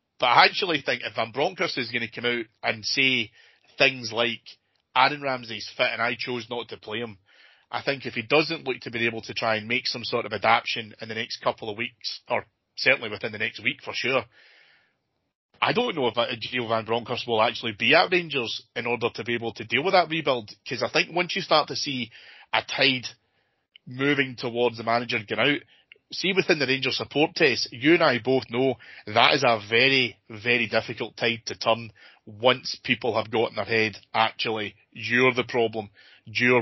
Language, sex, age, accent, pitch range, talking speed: English, male, 30-49, British, 110-130 Hz, 210 wpm